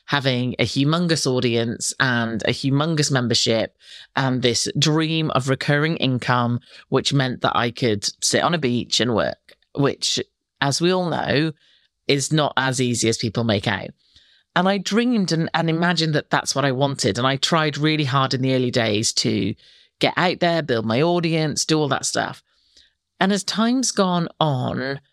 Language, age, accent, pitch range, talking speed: English, 40-59, British, 130-175 Hz, 175 wpm